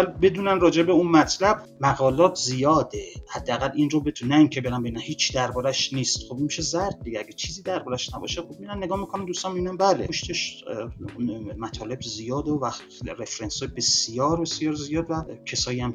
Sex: male